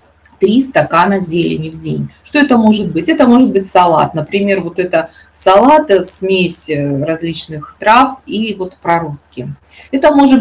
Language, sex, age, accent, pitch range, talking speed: Russian, female, 20-39, native, 170-215 Hz, 145 wpm